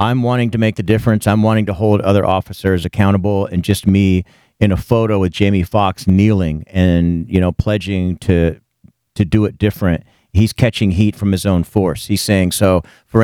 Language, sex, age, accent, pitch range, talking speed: English, male, 40-59, American, 95-115 Hz, 195 wpm